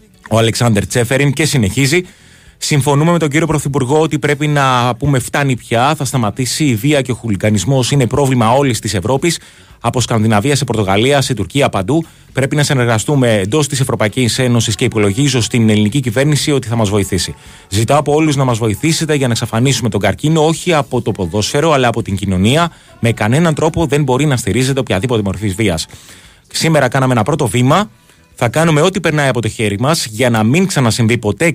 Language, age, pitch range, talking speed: Greek, 30-49, 110-150 Hz, 185 wpm